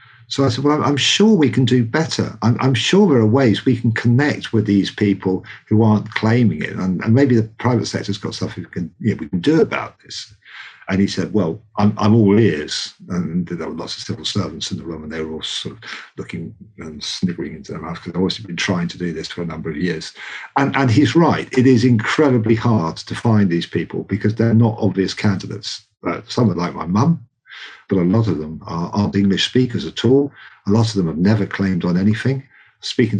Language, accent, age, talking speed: English, British, 50-69, 230 wpm